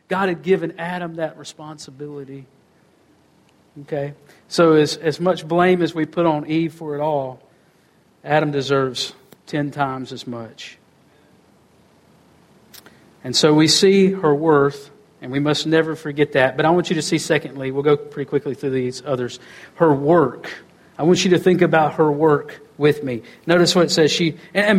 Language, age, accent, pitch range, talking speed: Finnish, 50-69, American, 155-205 Hz, 170 wpm